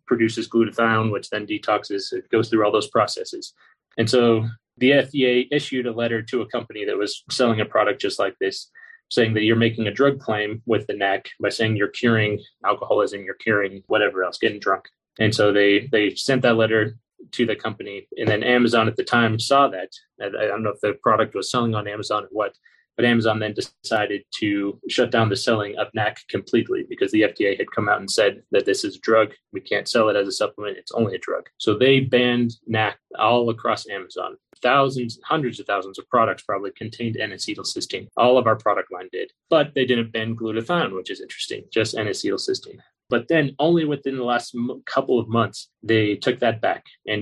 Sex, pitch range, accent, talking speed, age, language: male, 110-140 Hz, American, 205 wpm, 20-39, English